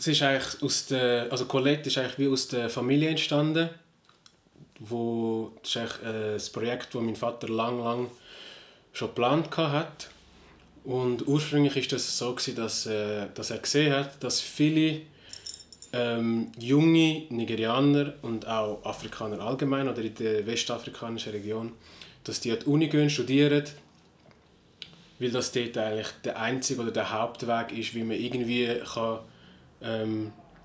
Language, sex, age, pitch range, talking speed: German, male, 20-39, 115-140 Hz, 150 wpm